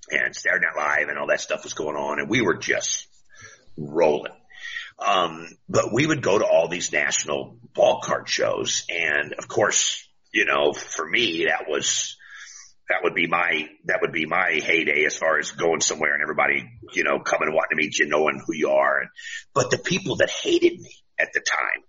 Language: English